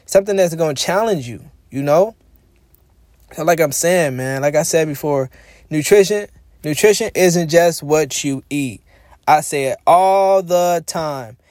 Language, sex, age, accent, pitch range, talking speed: English, male, 20-39, American, 135-180 Hz, 155 wpm